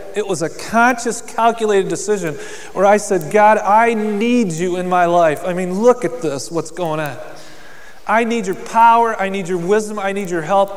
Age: 30-49